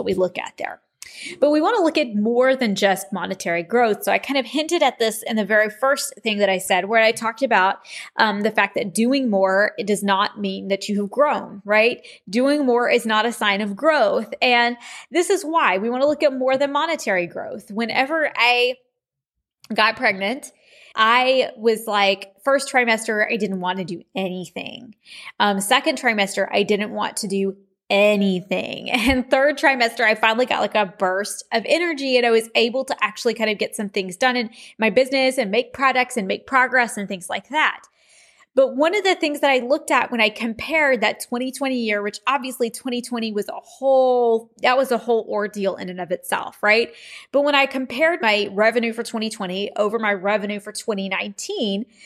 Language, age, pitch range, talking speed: English, 20-39, 205-265 Hz, 205 wpm